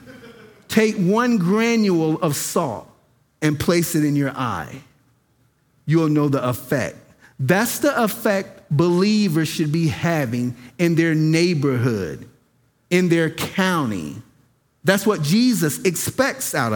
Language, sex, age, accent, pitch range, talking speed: English, male, 50-69, American, 145-195 Hz, 120 wpm